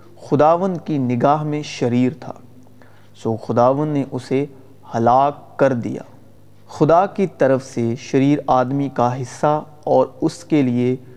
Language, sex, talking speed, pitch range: Urdu, male, 135 wpm, 120-150 Hz